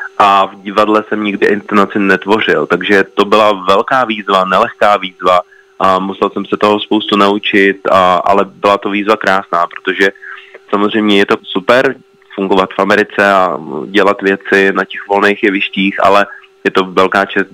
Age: 30-49